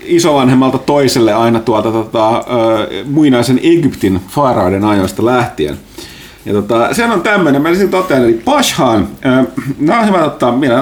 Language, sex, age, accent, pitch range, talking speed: Finnish, male, 30-49, native, 110-145 Hz, 145 wpm